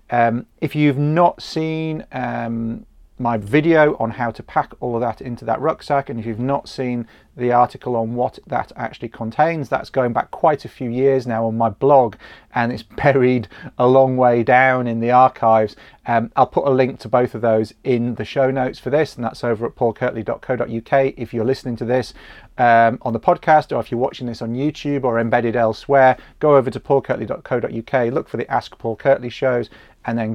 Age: 40-59